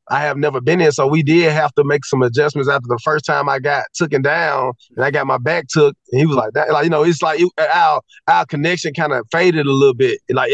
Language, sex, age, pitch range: English, male, 30-49, 145-185 Hz